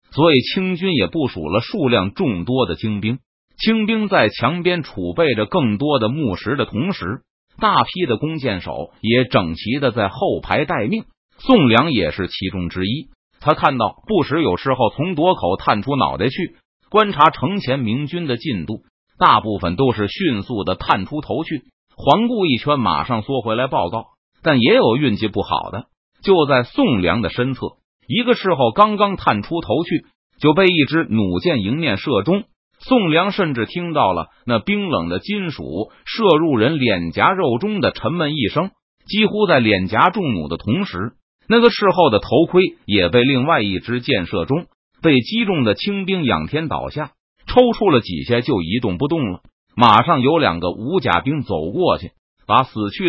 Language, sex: Chinese, male